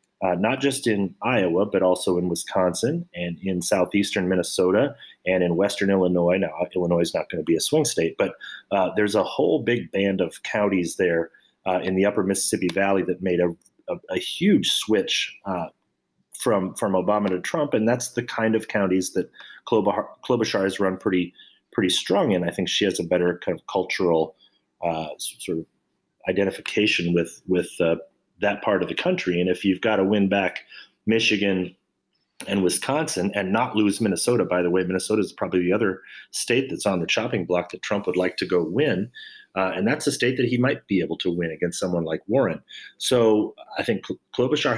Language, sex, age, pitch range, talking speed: English, male, 30-49, 90-115 Hz, 195 wpm